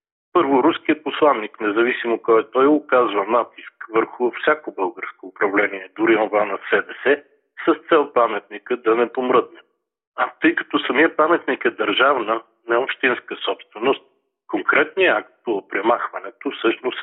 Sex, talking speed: male, 125 wpm